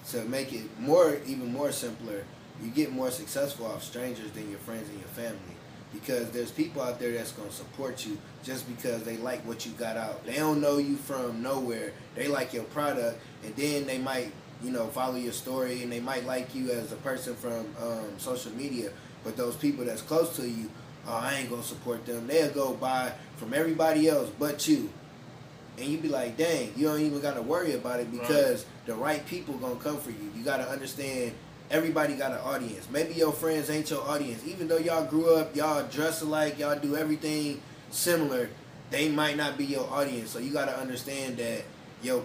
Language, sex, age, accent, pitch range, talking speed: English, male, 20-39, American, 120-150 Hz, 210 wpm